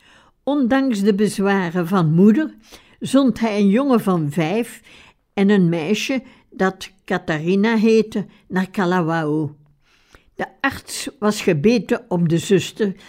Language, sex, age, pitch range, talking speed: Dutch, female, 60-79, 170-225 Hz, 120 wpm